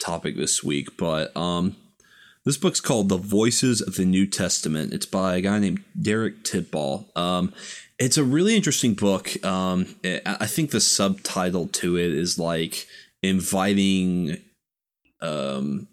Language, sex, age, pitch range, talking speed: English, male, 20-39, 90-105 Hz, 145 wpm